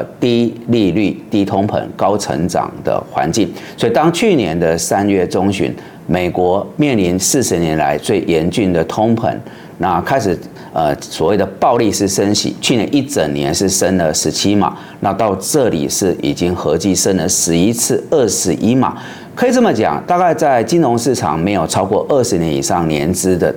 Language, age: Chinese, 40-59